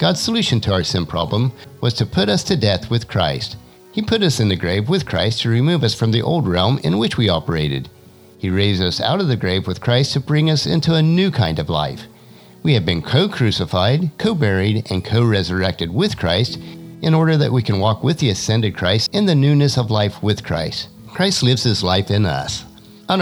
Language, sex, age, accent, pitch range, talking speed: English, male, 50-69, American, 95-160 Hz, 215 wpm